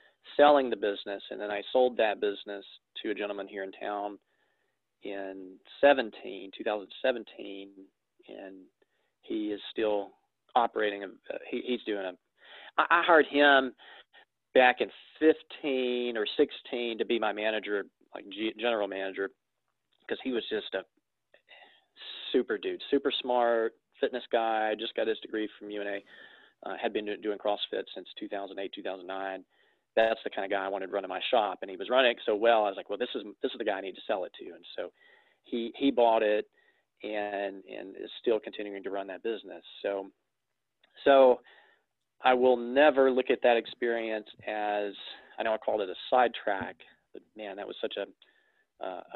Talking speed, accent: 175 wpm, American